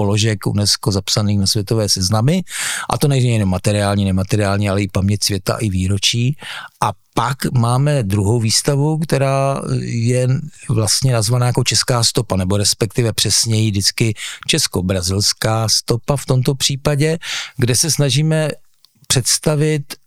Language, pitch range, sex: Czech, 105-130 Hz, male